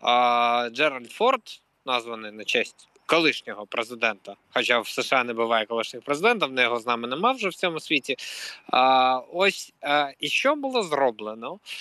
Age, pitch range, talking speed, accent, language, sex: 20-39, 135-210 Hz, 160 wpm, native, Ukrainian, male